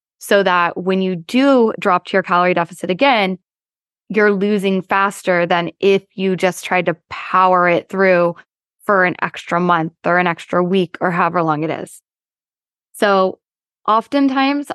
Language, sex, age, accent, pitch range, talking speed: English, female, 20-39, American, 180-205 Hz, 155 wpm